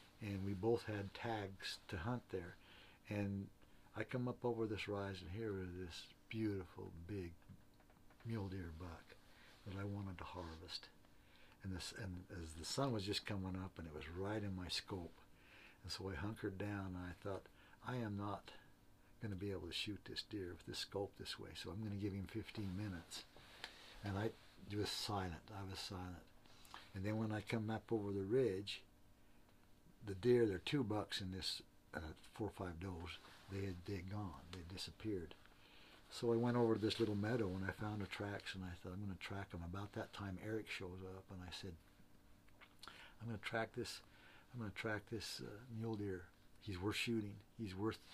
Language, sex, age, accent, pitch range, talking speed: English, male, 60-79, American, 95-110 Hz, 195 wpm